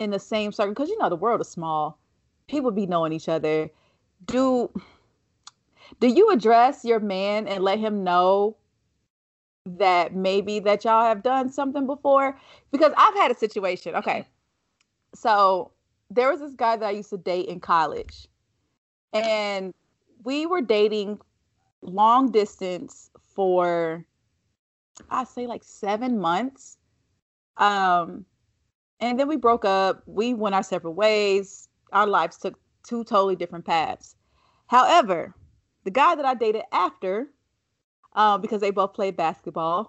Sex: female